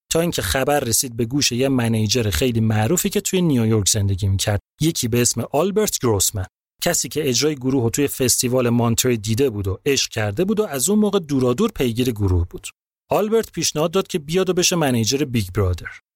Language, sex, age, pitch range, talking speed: Persian, male, 30-49, 110-150 Hz, 190 wpm